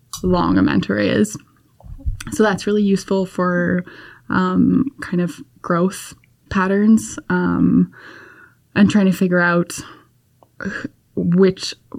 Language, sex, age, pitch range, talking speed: English, female, 10-29, 170-190 Hz, 105 wpm